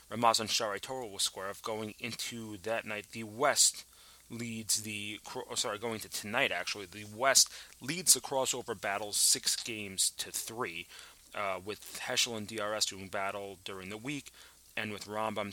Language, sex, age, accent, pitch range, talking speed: English, male, 30-49, American, 100-120 Hz, 165 wpm